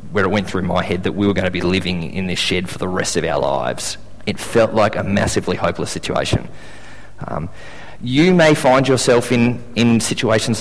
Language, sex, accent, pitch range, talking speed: English, male, Australian, 100-120 Hz, 210 wpm